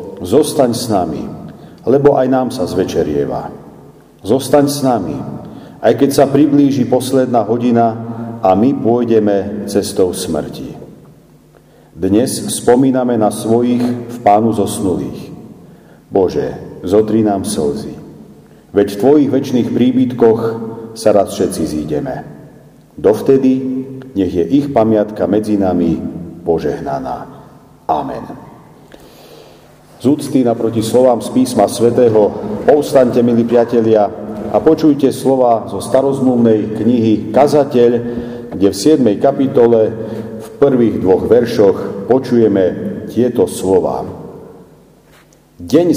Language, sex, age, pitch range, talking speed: Slovak, male, 40-59, 110-135 Hz, 105 wpm